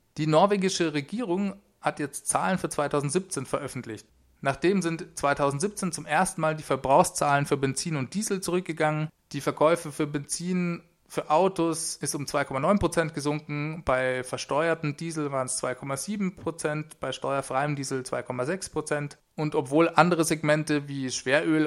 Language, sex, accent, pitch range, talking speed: German, male, German, 135-165 Hz, 135 wpm